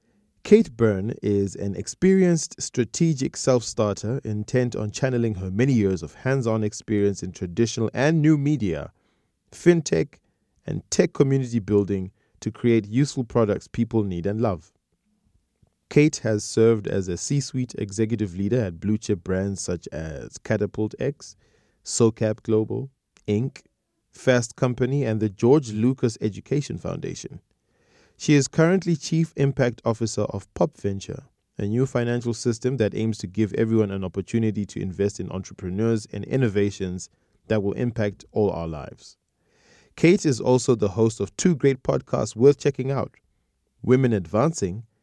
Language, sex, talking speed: English, male, 140 wpm